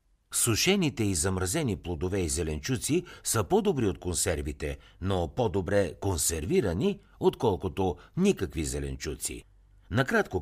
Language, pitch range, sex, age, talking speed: Bulgarian, 85-130 Hz, male, 60-79, 100 wpm